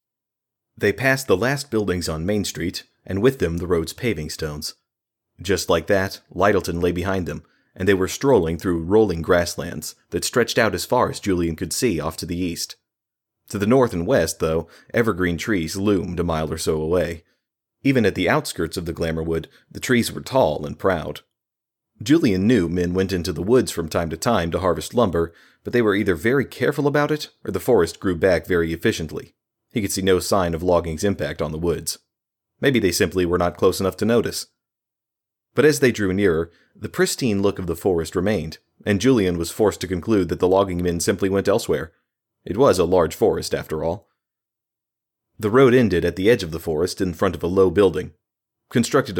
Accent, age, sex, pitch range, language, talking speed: American, 30-49, male, 85-110 Hz, English, 200 wpm